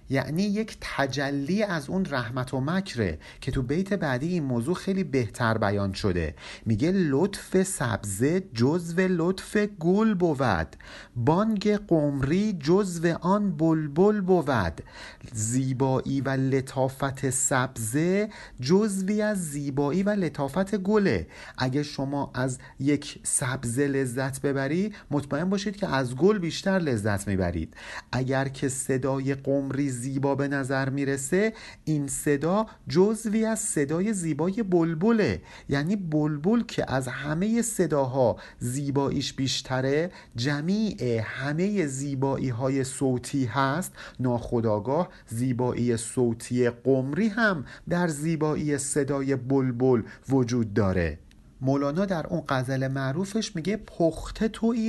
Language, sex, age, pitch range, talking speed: Persian, male, 50-69, 130-185 Hz, 115 wpm